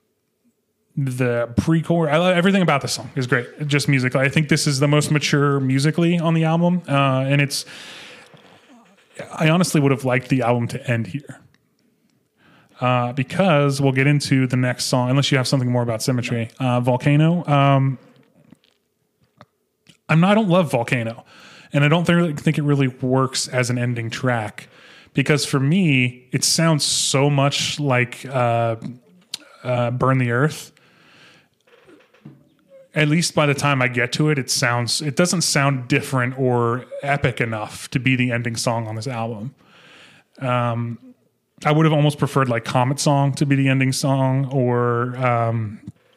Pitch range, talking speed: 125-150 Hz, 165 wpm